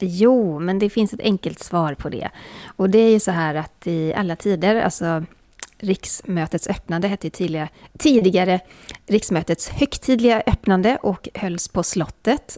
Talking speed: 155 wpm